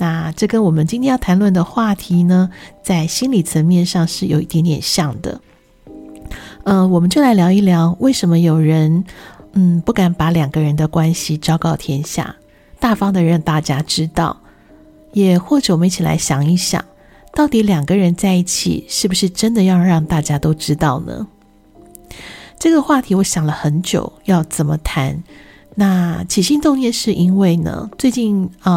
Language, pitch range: Chinese, 160-195 Hz